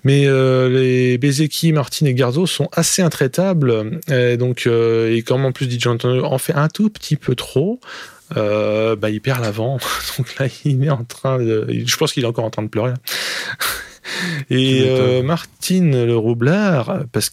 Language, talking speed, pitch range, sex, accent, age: French, 185 wpm, 120-145 Hz, male, French, 20-39